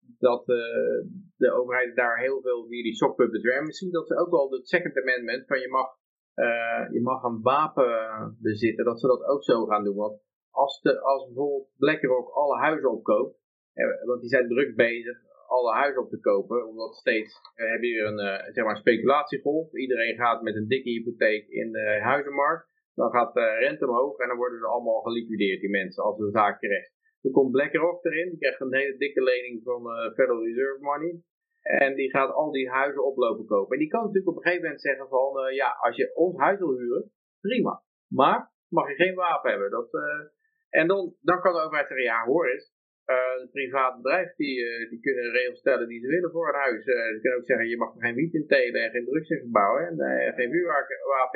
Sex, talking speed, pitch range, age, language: male, 220 wpm, 120-185 Hz, 30-49, Dutch